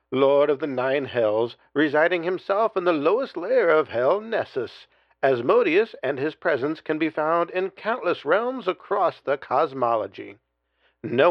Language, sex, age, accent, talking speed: English, male, 50-69, American, 150 wpm